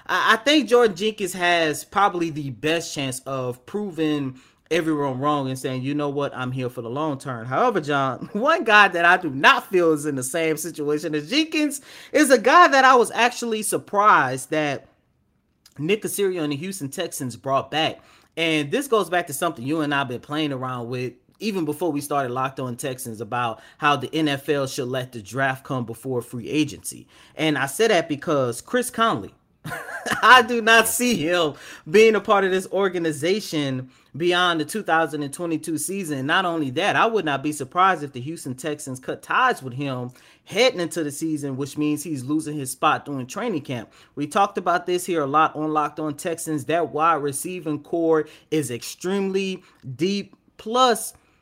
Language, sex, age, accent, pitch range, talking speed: English, male, 30-49, American, 140-190 Hz, 185 wpm